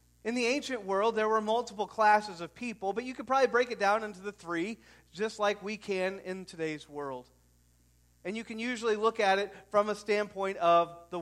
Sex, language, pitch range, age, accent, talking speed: male, English, 140-220 Hz, 40-59, American, 210 wpm